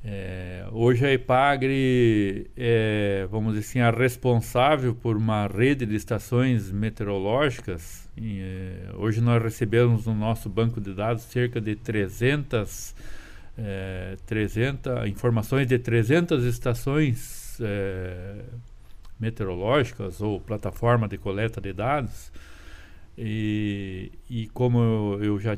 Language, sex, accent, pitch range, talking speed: Portuguese, male, Brazilian, 100-120 Hz, 115 wpm